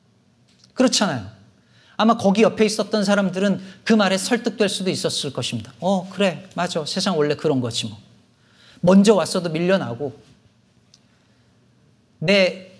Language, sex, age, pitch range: Korean, male, 40-59, 150-230 Hz